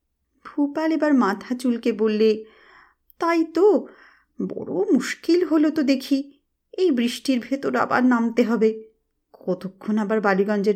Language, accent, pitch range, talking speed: Bengali, native, 205-310 Hz, 110 wpm